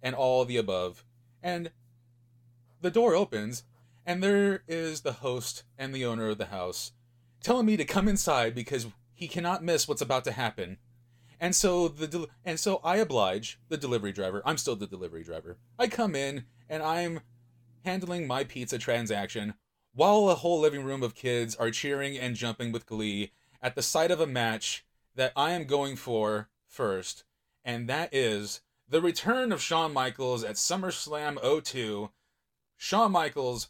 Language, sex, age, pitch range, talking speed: English, male, 30-49, 115-155 Hz, 170 wpm